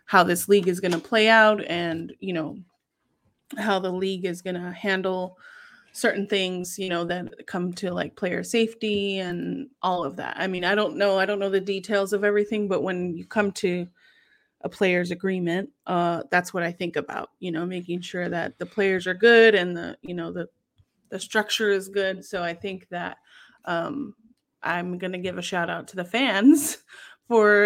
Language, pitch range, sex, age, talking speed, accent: English, 180-210 Hz, female, 30-49, 200 wpm, American